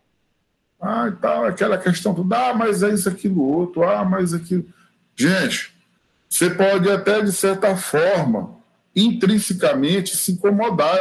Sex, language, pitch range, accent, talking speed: male, Portuguese, 160-200 Hz, Brazilian, 135 wpm